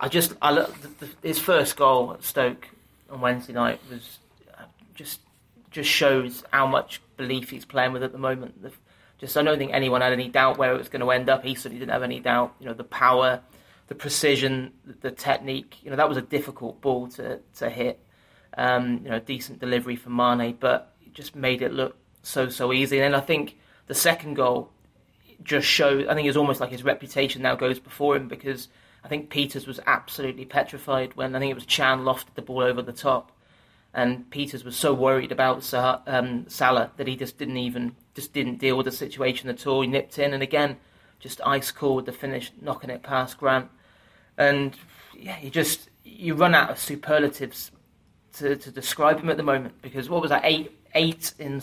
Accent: British